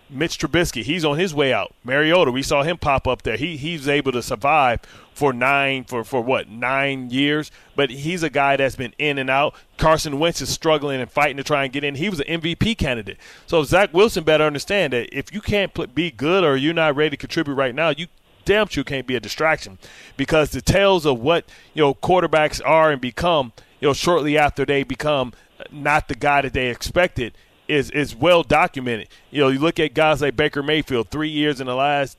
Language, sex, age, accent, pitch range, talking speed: English, male, 30-49, American, 135-160 Hz, 220 wpm